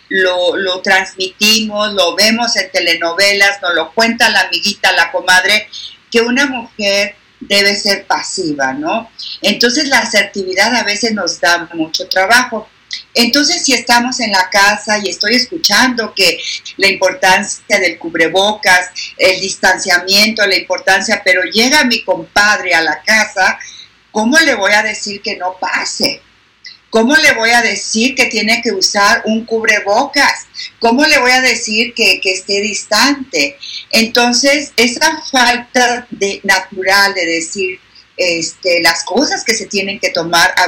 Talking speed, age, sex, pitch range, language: 145 wpm, 50-69, female, 185-235 Hz, Spanish